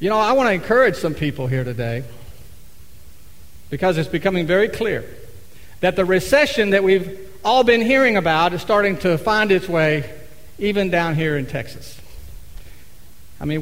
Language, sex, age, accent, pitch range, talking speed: English, male, 50-69, American, 130-205 Hz, 165 wpm